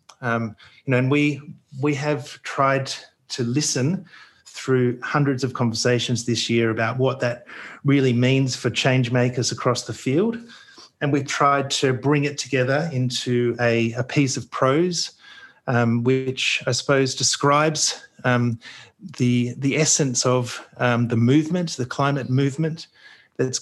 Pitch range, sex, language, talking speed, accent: 120-145 Hz, male, English, 145 wpm, Australian